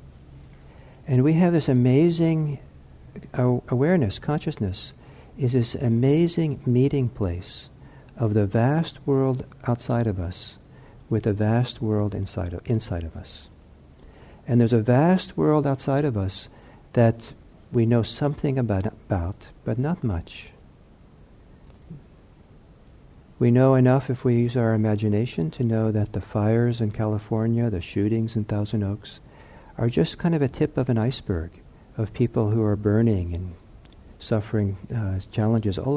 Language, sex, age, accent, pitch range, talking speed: English, male, 60-79, American, 95-130 Hz, 140 wpm